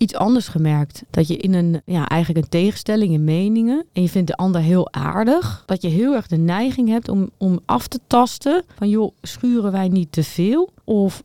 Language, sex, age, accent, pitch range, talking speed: Dutch, female, 30-49, Dutch, 170-220 Hz, 215 wpm